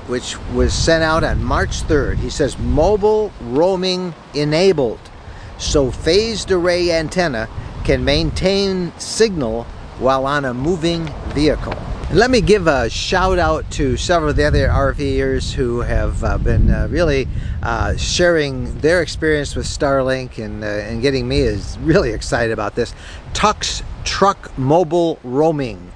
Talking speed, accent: 145 wpm, American